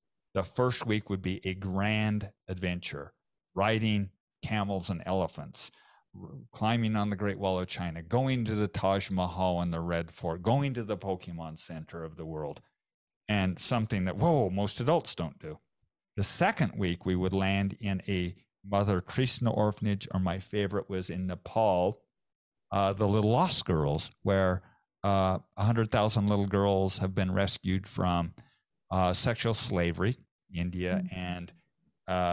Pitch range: 90-105 Hz